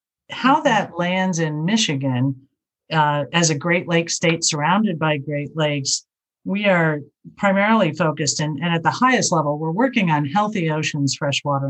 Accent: American